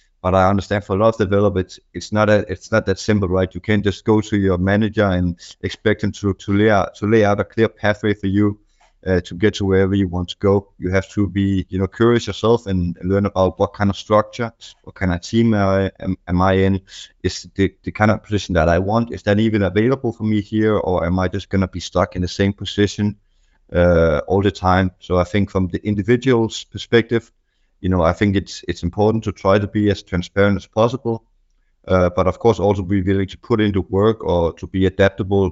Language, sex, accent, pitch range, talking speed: English, male, Danish, 95-105 Hz, 230 wpm